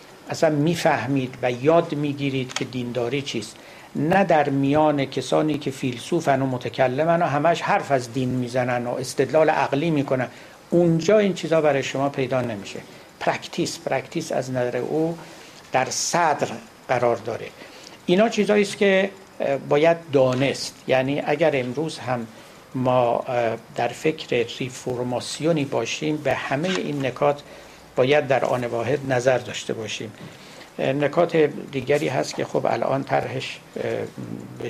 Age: 60-79